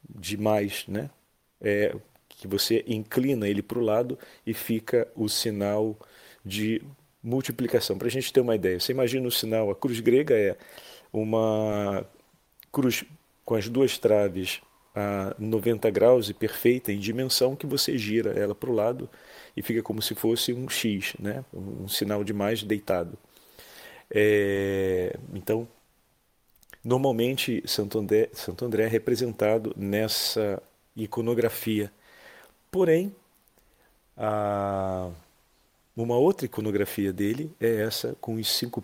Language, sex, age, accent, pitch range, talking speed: Portuguese, male, 40-59, Brazilian, 105-130 Hz, 130 wpm